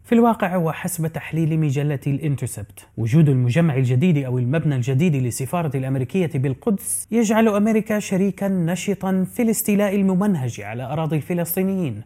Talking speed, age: 125 wpm, 30-49